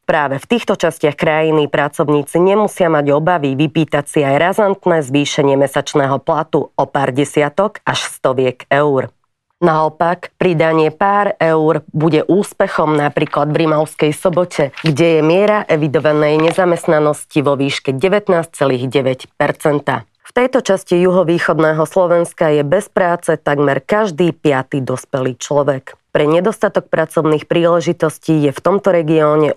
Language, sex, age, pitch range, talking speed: Slovak, female, 30-49, 140-175 Hz, 125 wpm